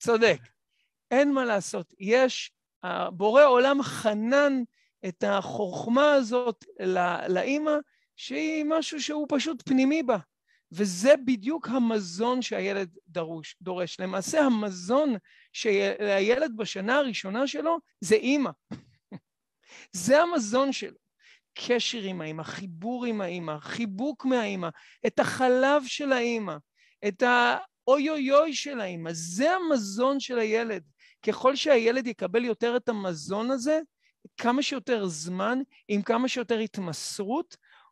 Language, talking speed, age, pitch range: Hebrew, 115 wpm, 40-59, 205-275 Hz